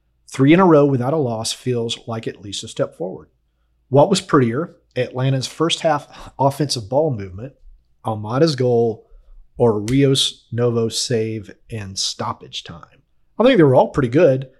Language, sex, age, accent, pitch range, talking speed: English, male, 30-49, American, 115-145 Hz, 155 wpm